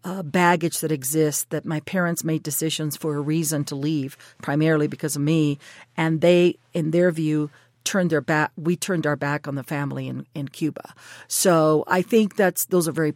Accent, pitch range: American, 150-180 Hz